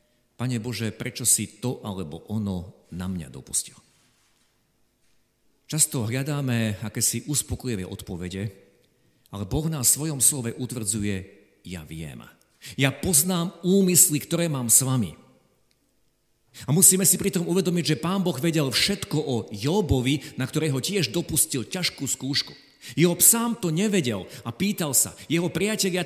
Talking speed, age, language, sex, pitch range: 135 wpm, 50-69, Slovak, male, 105-155 Hz